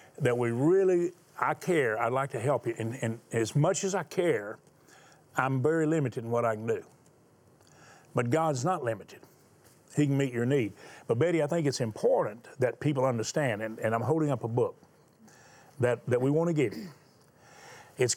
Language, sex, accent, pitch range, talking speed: English, male, American, 125-170 Hz, 190 wpm